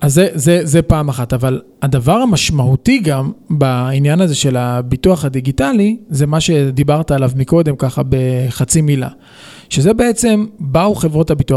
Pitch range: 140-180 Hz